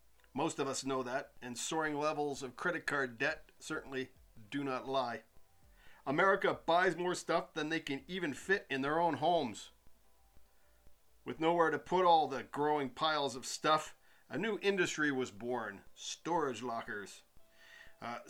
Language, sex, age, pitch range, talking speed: English, male, 50-69, 130-170 Hz, 155 wpm